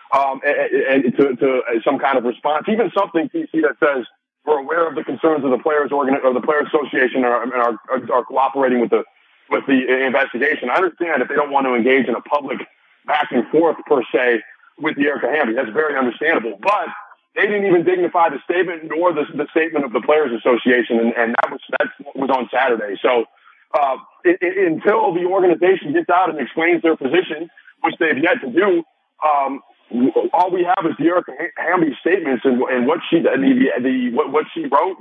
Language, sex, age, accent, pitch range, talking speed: English, male, 30-49, American, 130-185 Hz, 205 wpm